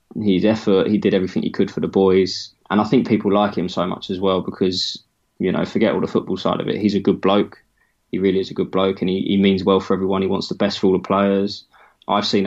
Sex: male